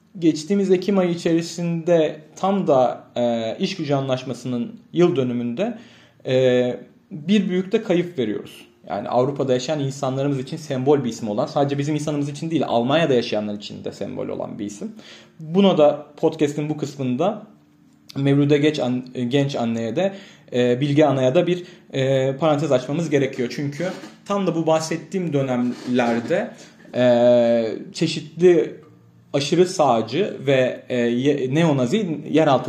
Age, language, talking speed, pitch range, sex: 40-59, Turkish, 130 wpm, 130-180 Hz, male